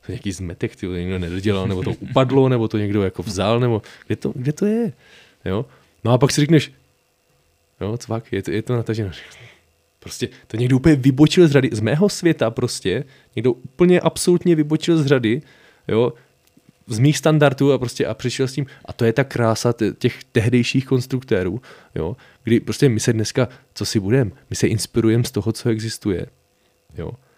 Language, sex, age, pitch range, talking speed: Czech, male, 20-39, 105-130 Hz, 185 wpm